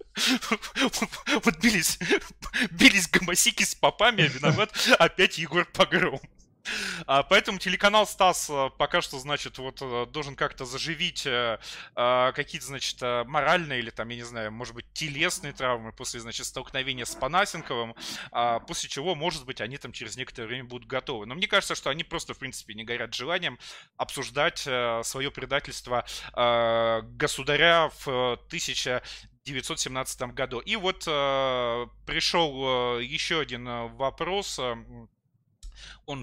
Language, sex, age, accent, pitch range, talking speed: Russian, male, 20-39, native, 125-165 Hz, 135 wpm